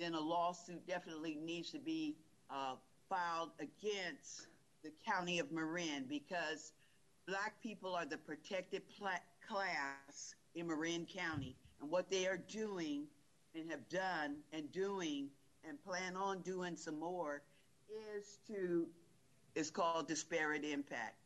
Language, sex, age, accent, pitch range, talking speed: English, female, 50-69, American, 150-190 Hz, 135 wpm